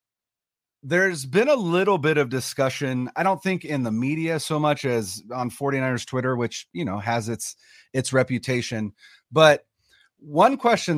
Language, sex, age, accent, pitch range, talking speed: English, male, 30-49, American, 115-155 Hz, 160 wpm